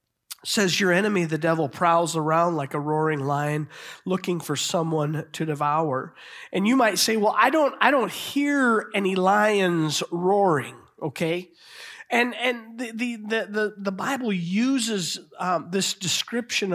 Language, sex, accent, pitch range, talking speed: English, male, American, 155-210 Hz, 145 wpm